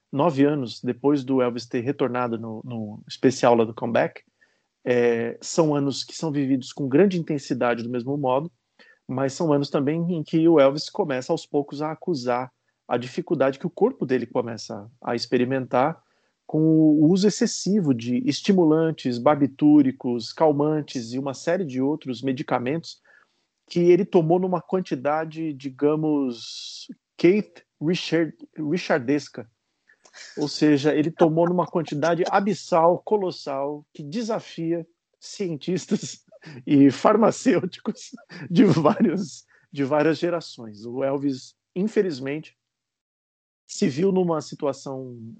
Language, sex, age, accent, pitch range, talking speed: Portuguese, male, 40-59, Brazilian, 130-170 Hz, 120 wpm